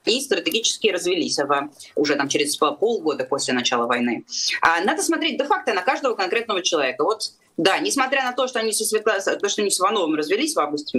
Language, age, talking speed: Russian, 20-39, 170 wpm